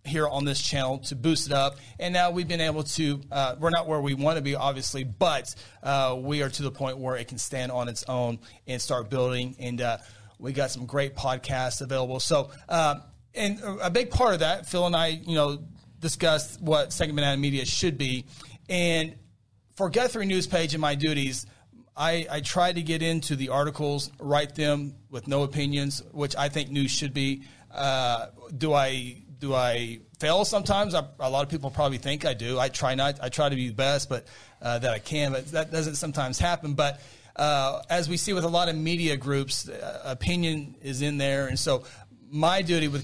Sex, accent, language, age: male, American, English, 40-59